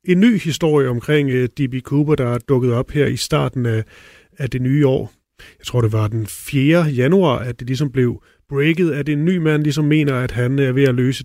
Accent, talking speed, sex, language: native, 230 wpm, male, Danish